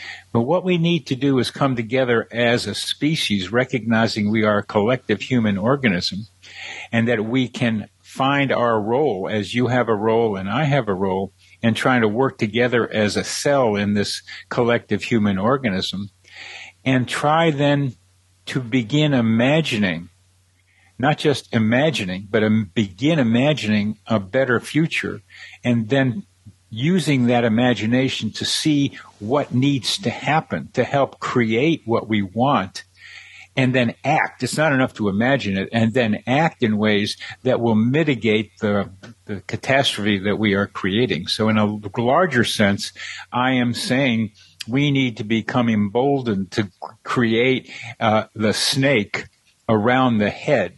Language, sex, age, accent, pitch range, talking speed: English, male, 60-79, American, 105-130 Hz, 150 wpm